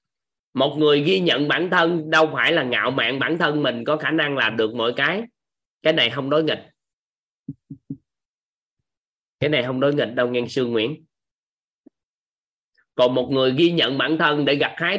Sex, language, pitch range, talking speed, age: male, Vietnamese, 115-165 Hz, 180 wpm, 20-39